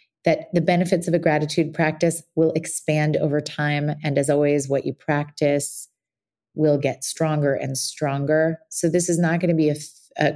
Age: 30-49